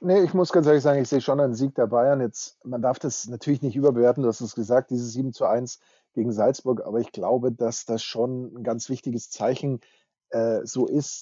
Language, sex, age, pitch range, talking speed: German, male, 30-49, 120-145 Hz, 230 wpm